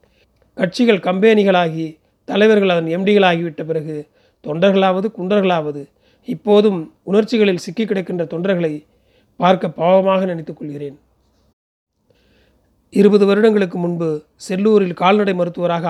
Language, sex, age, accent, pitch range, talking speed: Tamil, male, 40-59, native, 150-195 Hz, 85 wpm